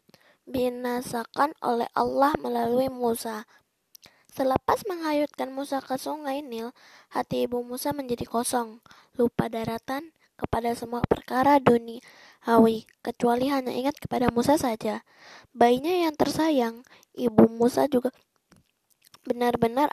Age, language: 20-39, Indonesian